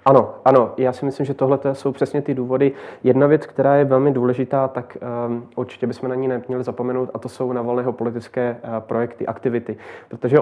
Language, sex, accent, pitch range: Czech, male, native, 120-130 Hz